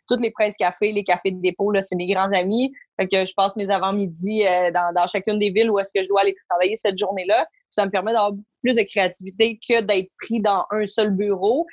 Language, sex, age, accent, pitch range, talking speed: English, female, 20-39, Canadian, 190-225 Hz, 245 wpm